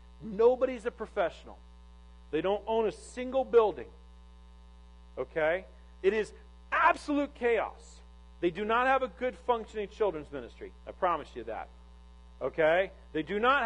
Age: 40-59